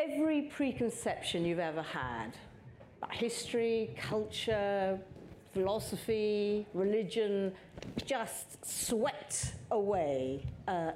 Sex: female